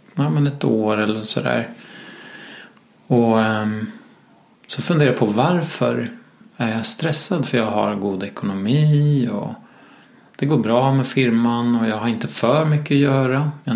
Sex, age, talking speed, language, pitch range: male, 20-39, 155 wpm, English, 115-140 Hz